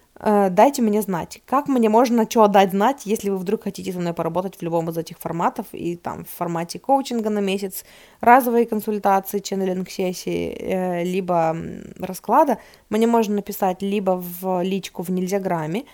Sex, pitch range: female, 185-220 Hz